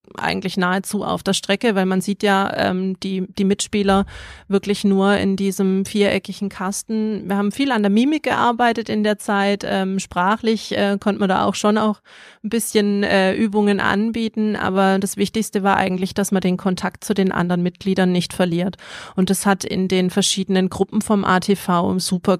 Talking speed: 180 wpm